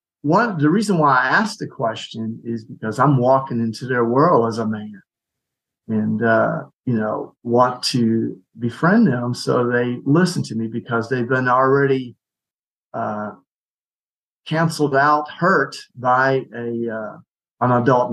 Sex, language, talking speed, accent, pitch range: male, English, 145 wpm, American, 115-140 Hz